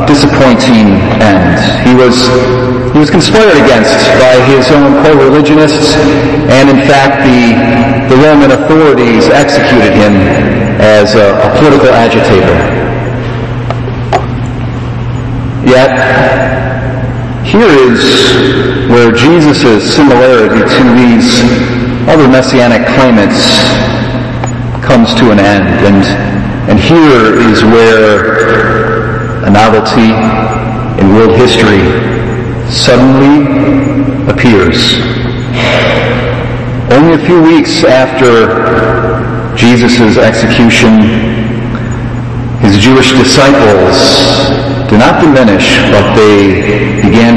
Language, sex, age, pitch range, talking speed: English, male, 40-59, 115-130 Hz, 85 wpm